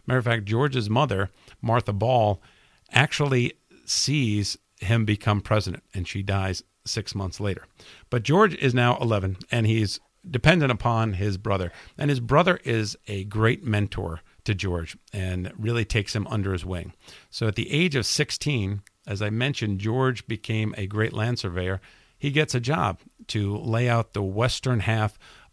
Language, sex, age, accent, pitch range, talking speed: English, male, 50-69, American, 100-125 Hz, 165 wpm